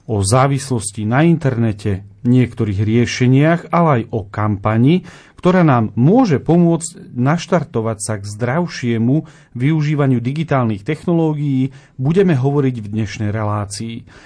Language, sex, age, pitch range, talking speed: Slovak, male, 40-59, 110-145 Hz, 110 wpm